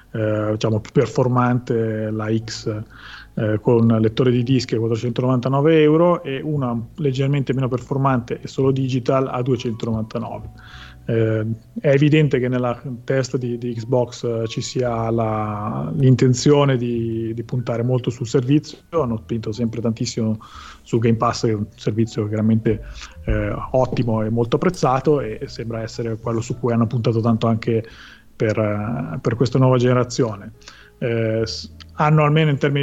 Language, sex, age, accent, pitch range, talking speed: Italian, male, 30-49, native, 110-130 Hz, 150 wpm